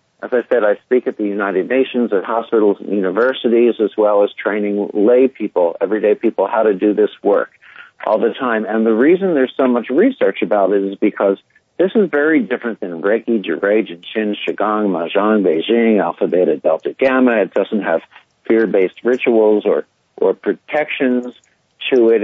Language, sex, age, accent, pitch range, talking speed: English, male, 50-69, American, 100-130 Hz, 175 wpm